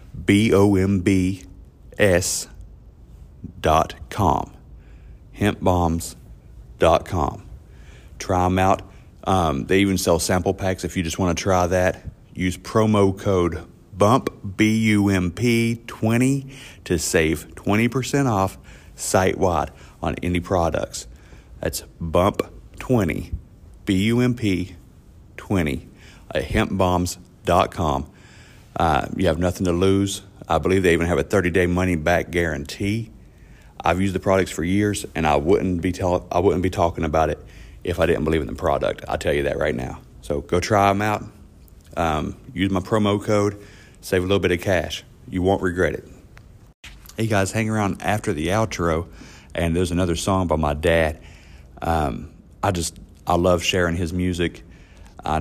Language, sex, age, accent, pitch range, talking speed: English, male, 40-59, American, 85-100 Hz, 155 wpm